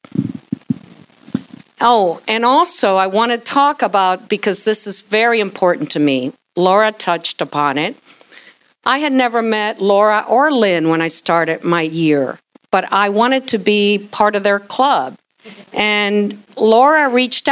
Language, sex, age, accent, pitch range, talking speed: English, female, 50-69, American, 195-250 Hz, 145 wpm